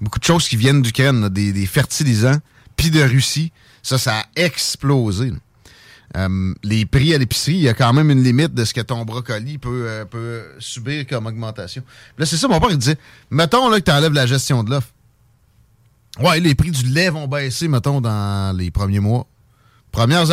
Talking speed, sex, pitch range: 190 wpm, male, 115-145 Hz